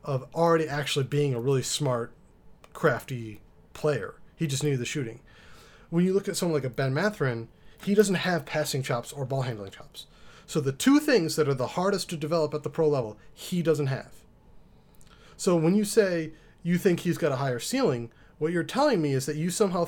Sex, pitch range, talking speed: male, 135-170 Hz, 205 wpm